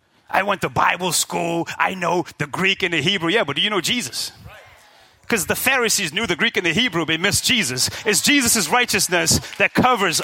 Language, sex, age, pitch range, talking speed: English, male, 30-49, 185-265 Hz, 210 wpm